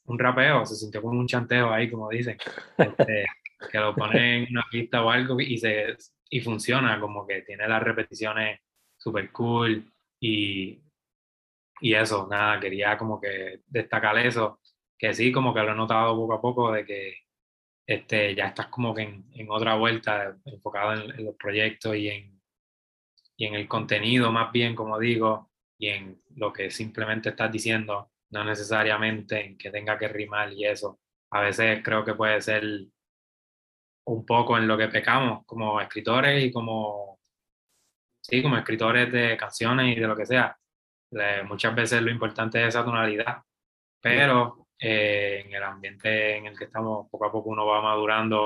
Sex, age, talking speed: male, 20-39, 170 wpm